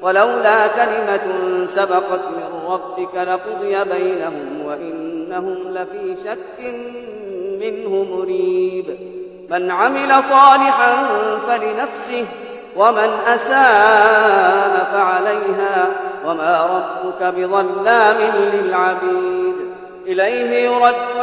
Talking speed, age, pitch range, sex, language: 70 wpm, 30-49, 195-275 Hz, female, Arabic